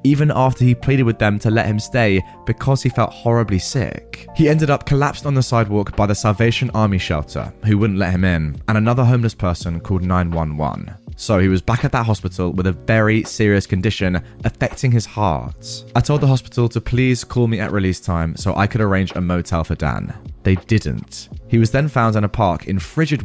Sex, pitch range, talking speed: male, 95-125 Hz, 215 wpm